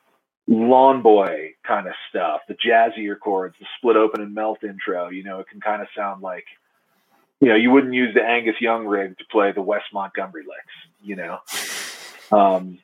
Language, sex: English, male